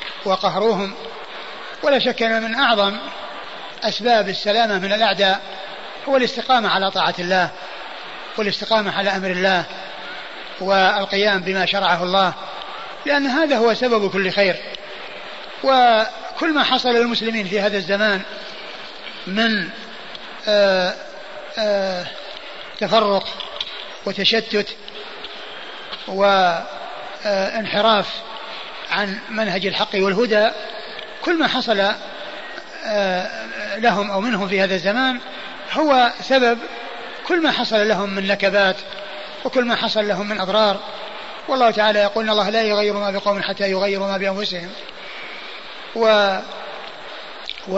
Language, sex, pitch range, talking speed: Arabic, male, 195-230 Hz, 105 wpm